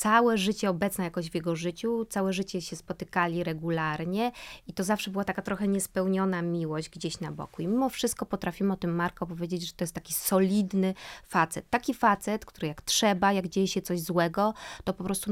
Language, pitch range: Polish, 170-195 Hz